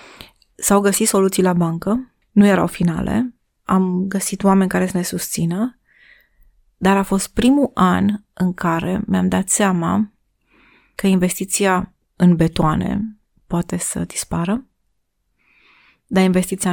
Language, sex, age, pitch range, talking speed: Romanian, female, 30-49, 175-205 Hz, 120 wpm